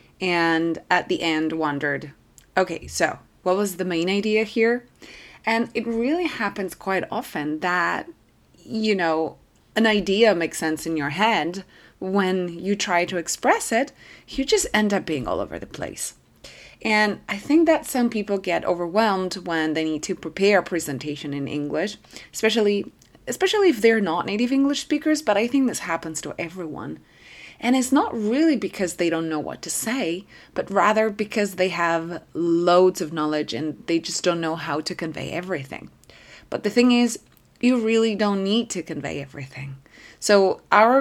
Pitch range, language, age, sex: 165-215 Hz, English, 30-49, female